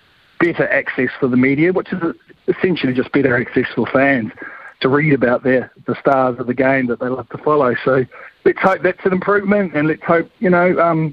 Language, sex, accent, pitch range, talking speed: English, male, Australian, 135-155 Hz, 205 wpm